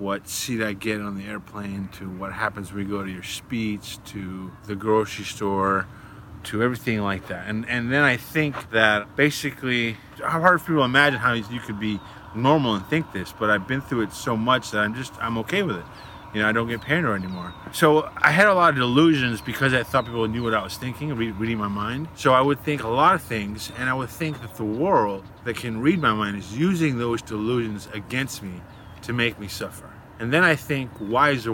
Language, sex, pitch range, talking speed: English, male, 100-125 Hz, 230 wpm